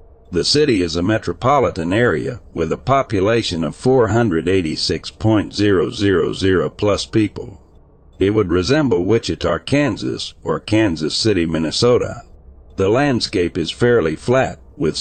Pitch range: 85-115 Hz